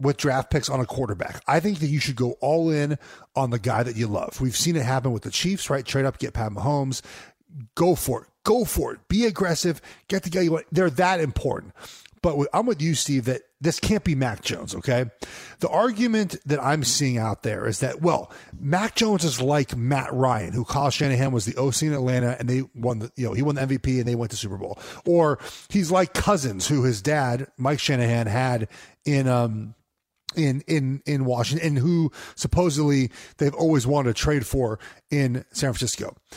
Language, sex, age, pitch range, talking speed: English, male, 30-49, 125-175 Hz, 215 wpm